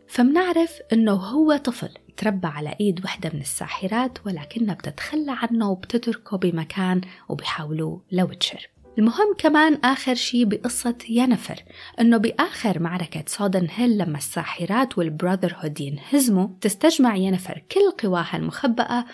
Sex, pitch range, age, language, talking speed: female, 180-245 Hz, 20-39, Arabic, 120 wpm